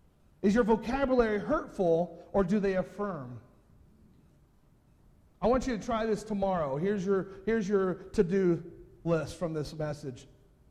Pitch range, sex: 165-225 Hz, male